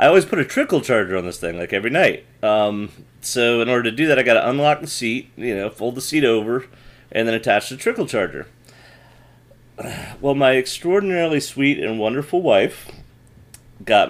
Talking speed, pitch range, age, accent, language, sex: 185 wpm, 95-125 Hz, 30-49, American, English, male